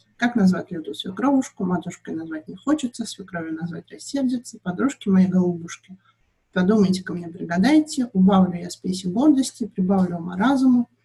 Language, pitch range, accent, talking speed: Russian, 180-205 Hz, native, 130 wpm